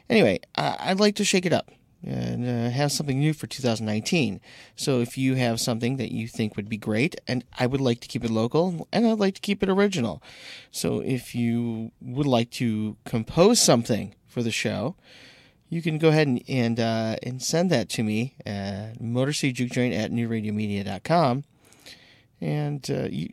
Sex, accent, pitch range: male, American, 110-145 Hz